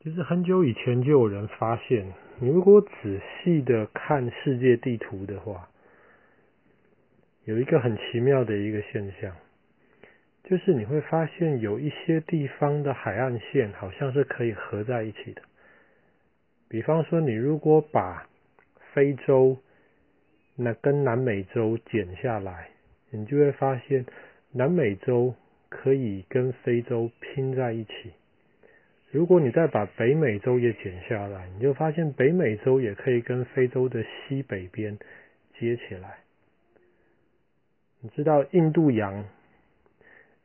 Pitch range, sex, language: 110-140 Hz, male, Chinese